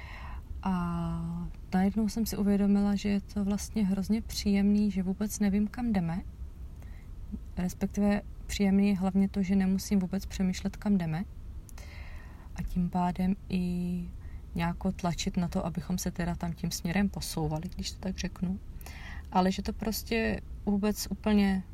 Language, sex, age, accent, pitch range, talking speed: Czech, female, 30-49, native, 170-200 Hz, 145 wpm